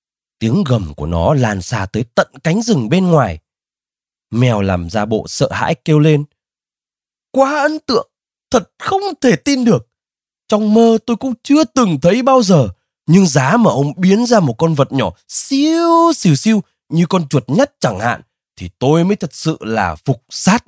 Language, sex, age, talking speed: Vietnamese, male, 20-39, 185 wpm